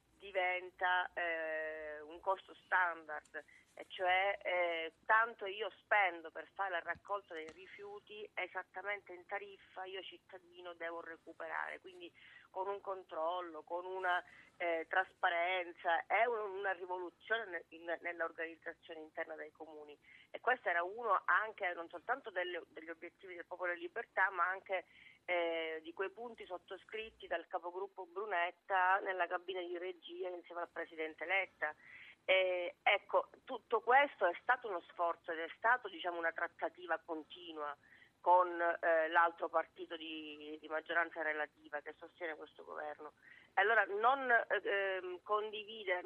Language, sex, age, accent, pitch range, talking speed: Italian, female, 30-49, native, 165-195 Hz, 135 wpm